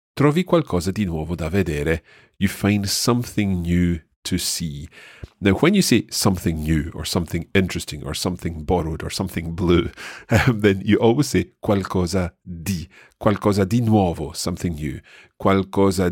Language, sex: English, male